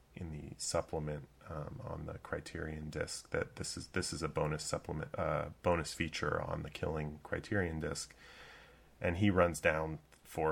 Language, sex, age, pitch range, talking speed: English, male, 30-49, 75-85 Hz, 165 wpm